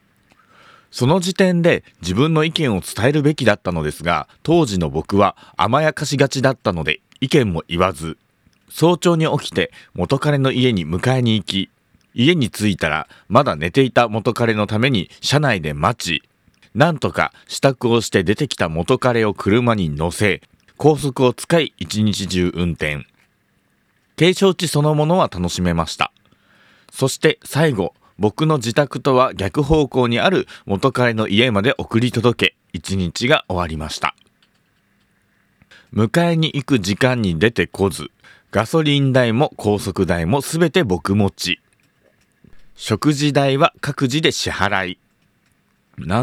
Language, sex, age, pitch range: Japanese, male, 40-59, 95-145 Hz